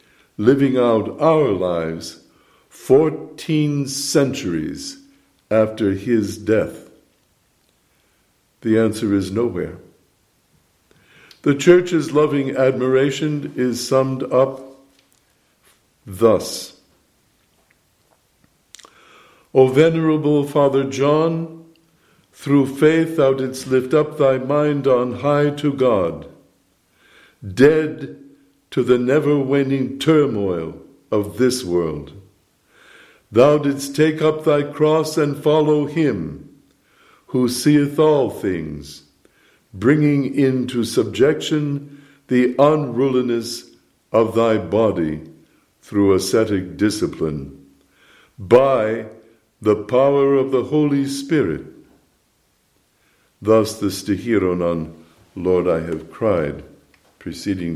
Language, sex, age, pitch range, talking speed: English, male, 60-79, 100-145 Hz, 85 wpm